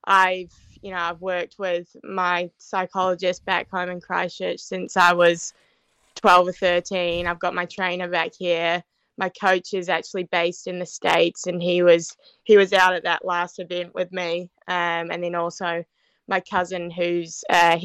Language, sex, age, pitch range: English, female, 20-39, 170-185 Hz